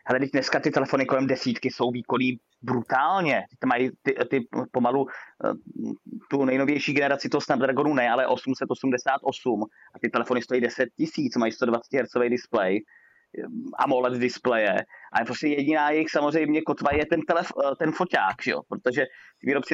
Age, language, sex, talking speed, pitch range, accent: 30-49, Czech, male, 150 wpm, 125-160 Hz, native